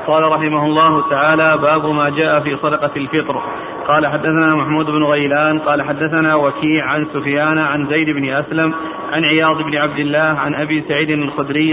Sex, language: male, Arabic